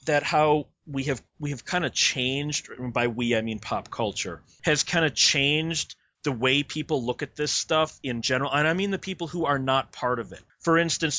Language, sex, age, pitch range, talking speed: English, male, 30-49, 130-175 Hz, 220 wpm